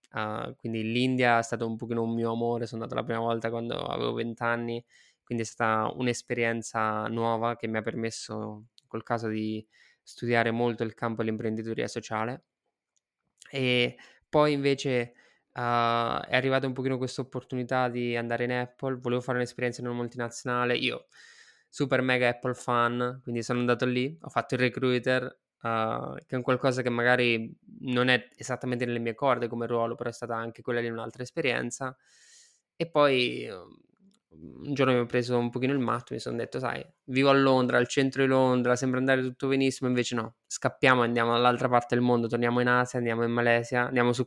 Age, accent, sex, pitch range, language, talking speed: 20-39, native, male, 115-130 Hz, Italian, 185 wpm